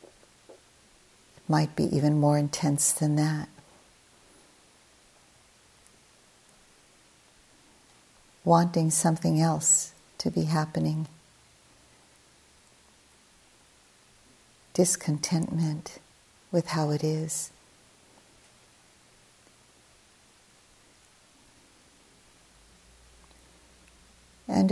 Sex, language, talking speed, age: female, English, 45 wpm, 50-69